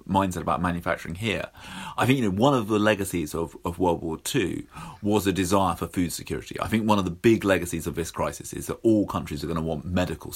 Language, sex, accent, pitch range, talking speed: English, male, British, 85-105 Hz, 245 wpm